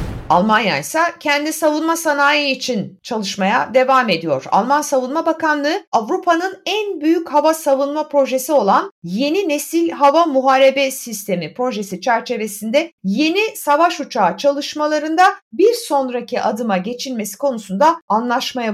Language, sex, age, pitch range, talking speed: Turkish, female, 50-69, 215-300 Hz, 115 wpm